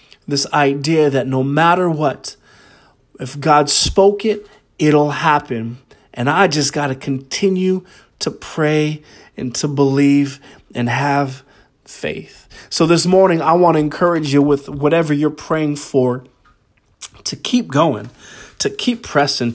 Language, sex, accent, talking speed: English, male, American, 140 wpm